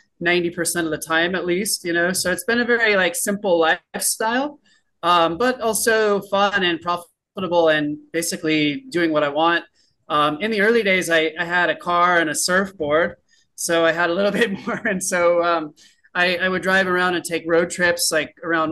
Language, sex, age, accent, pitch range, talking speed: English, male, 30-49, American, 155-180 Hz, 195 wpm